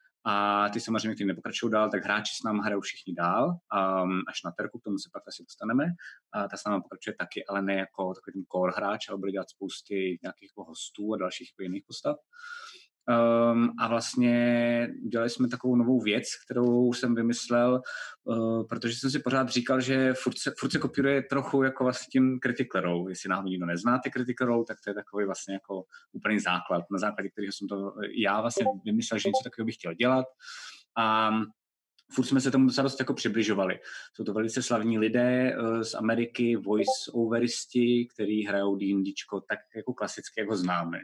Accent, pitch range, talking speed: native, 100-130 Hz, 175 wpm